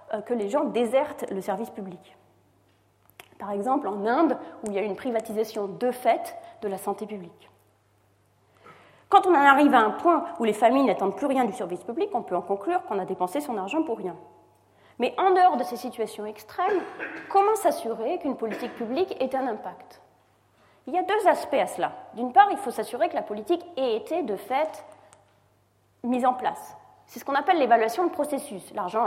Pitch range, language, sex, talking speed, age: 200-320 Hz, French, female, 195 wpm, 30-49